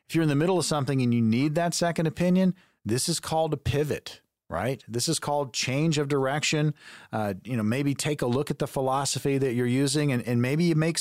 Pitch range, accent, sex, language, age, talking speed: 125-165 Hz, American, male, English, 40-59, 235 wpm